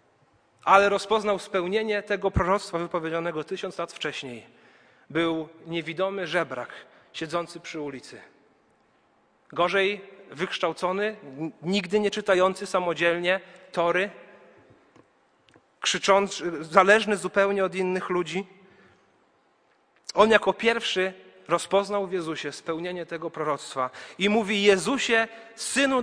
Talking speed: 95 wpm